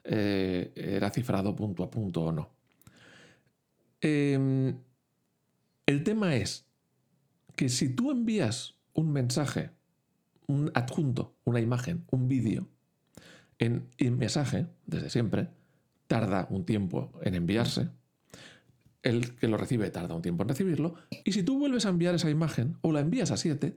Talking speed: 140 wpm